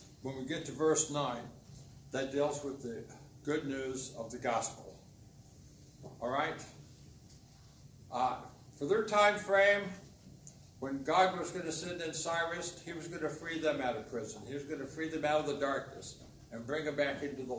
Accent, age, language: American, 60-79, English